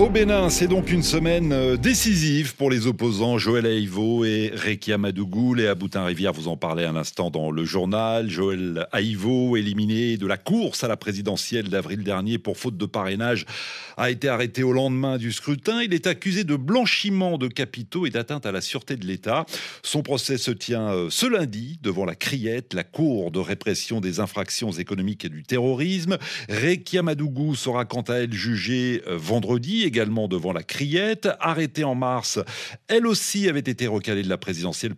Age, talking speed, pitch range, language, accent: 40-59, 180 wpm, 100-150 Hz, French, French